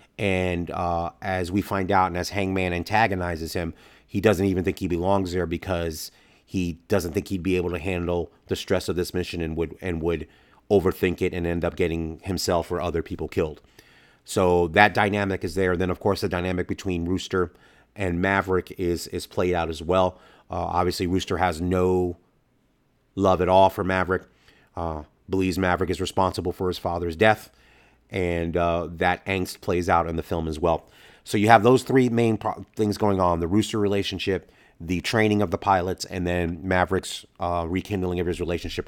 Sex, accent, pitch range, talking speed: male, American, 85-100 Hz, 190 wpm